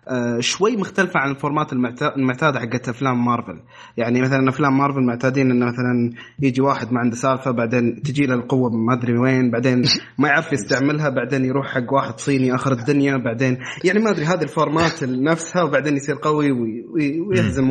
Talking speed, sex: 170 wpm, male